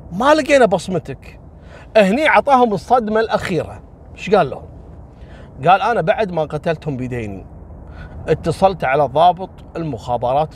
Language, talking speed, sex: Arabic, 115 wpm, male